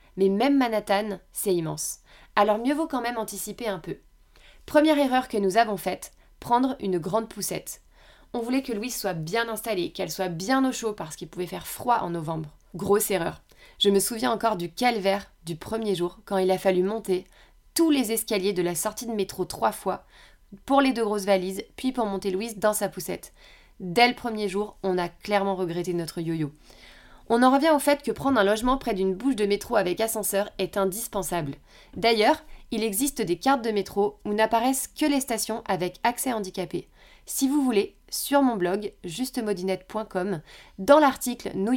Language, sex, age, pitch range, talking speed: French, female, 20-39, 190-240 Hz, 190 wpm